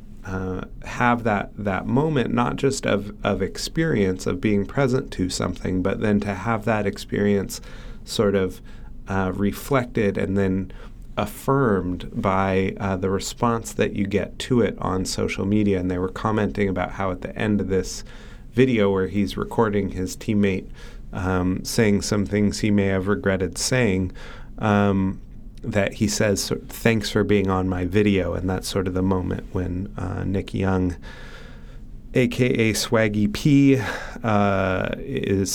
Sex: male